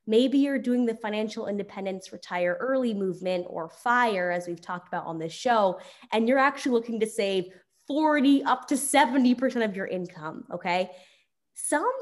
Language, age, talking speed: English, 20-39, 165 wpm